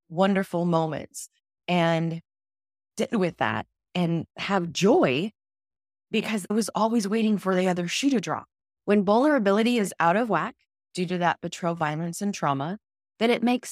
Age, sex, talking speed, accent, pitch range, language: 20-39, female, 155 wpm, American, 165-210 Hz, English